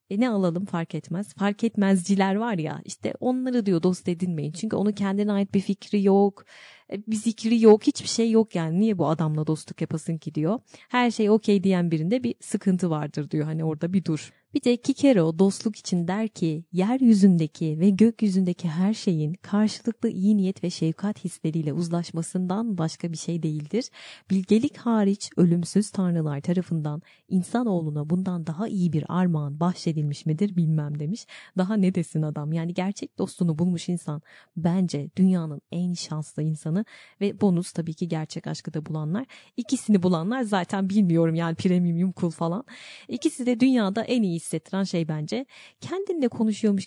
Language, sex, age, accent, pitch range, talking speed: Turkish, female, 30-49, native, 160-205 Hz, 160 wpm